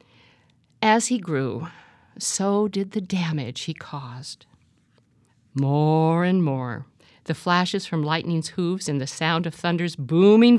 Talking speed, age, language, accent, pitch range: 130 wpm, 50-69, English, American, 140-200 Hz